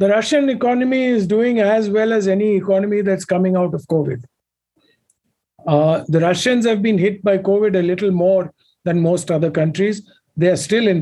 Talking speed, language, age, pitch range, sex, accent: 185 wpm, English, 50-69, 155-205 Hz, male, Indian